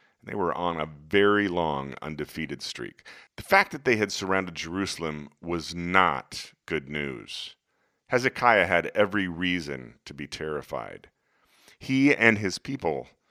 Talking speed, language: 135 wpm, English